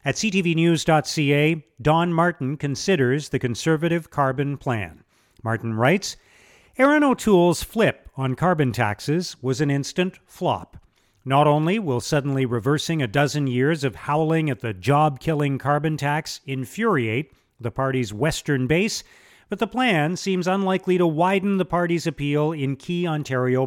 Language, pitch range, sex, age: English, 130-175 Hz, male, 50-69